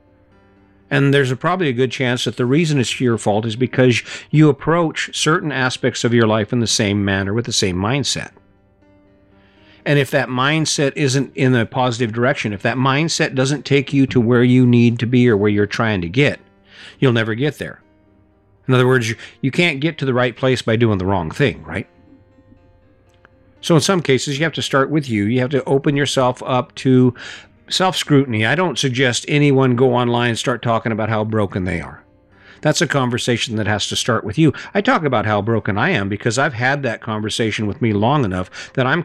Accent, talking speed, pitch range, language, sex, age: American, 205 wpm, 105-135 Hz, English, male, 50-69